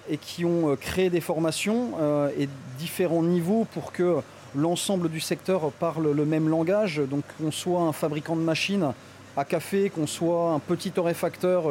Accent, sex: French, male